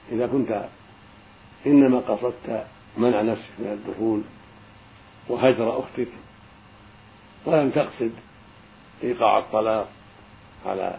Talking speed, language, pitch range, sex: 80 wpm, Arabic, 105-110 Hz, male